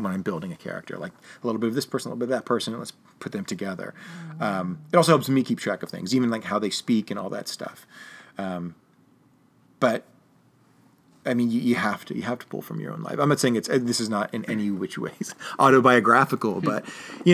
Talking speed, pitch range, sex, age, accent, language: 245 wpm, 105-135 Hz, male, 30-49, American, English